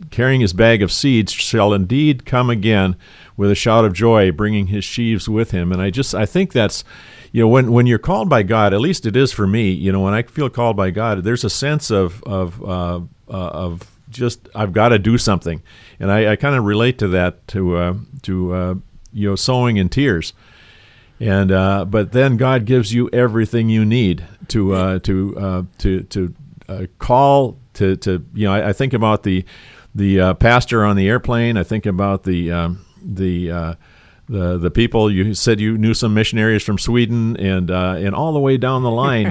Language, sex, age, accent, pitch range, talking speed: English, male, 50-69, American, 95-120 Hz, 210 wpm